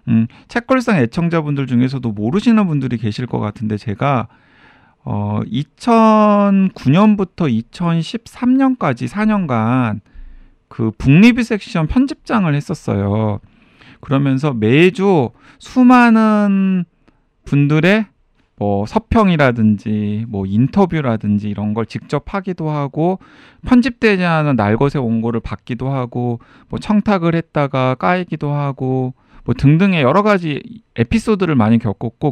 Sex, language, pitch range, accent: male, Korean, 115-185 Hz, native